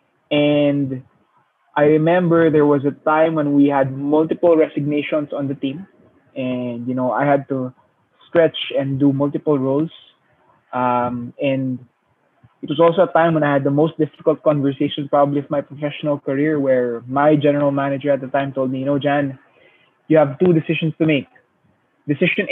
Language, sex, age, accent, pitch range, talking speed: English, male, 20-39, Filipino, 135-155 Hz, 170 wpm